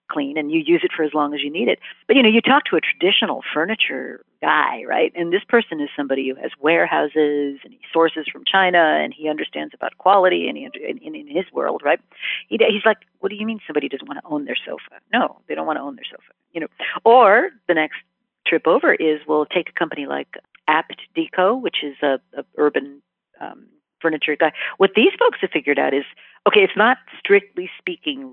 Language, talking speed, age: English, 220 wpm, 50-69